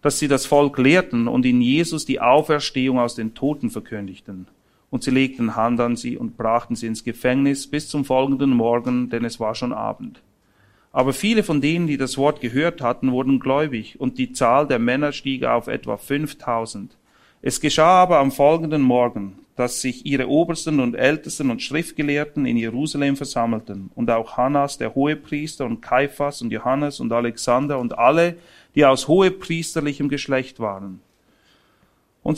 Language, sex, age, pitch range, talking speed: German, male, 40-59, 120-150 Hz, 165 wpm